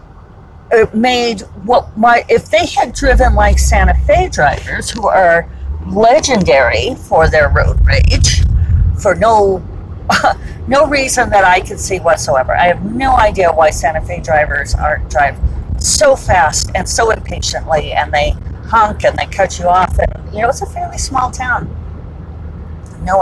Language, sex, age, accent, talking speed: English, female, 40-59, American, 150 wpm